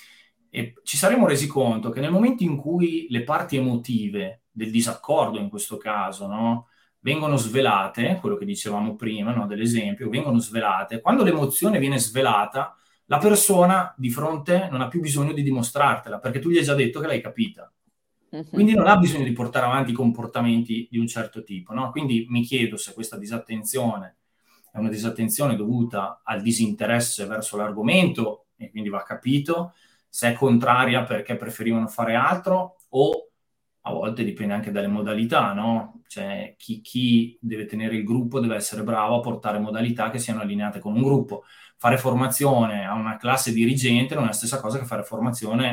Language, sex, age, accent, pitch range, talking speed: Italian, male, 20-39, native, 110-140 Hz, 170 wpm